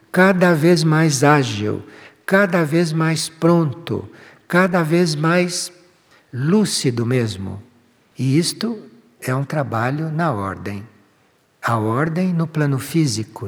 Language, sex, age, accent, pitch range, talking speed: Portuguese, male, 60-79, Brazilian, 115-160 Hz, 110 wpm